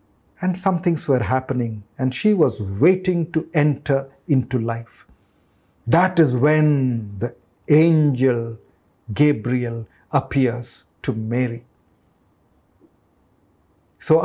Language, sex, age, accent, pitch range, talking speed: Kannada, male, 50-69, native, 120-165 Hz, 95 wpm